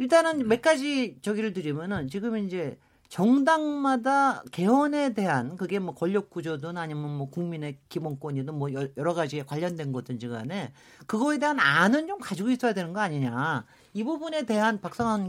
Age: 40-59